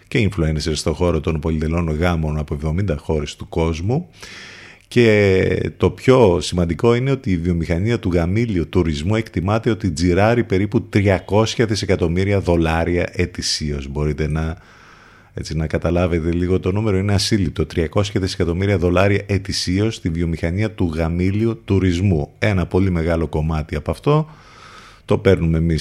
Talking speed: 135 wpm